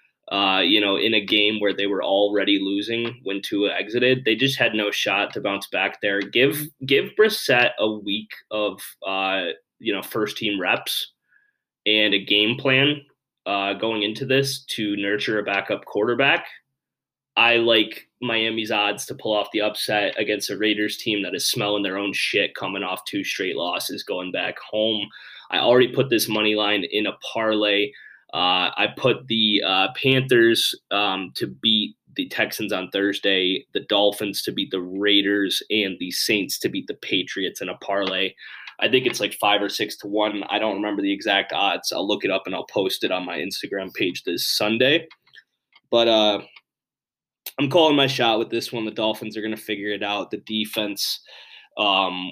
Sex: male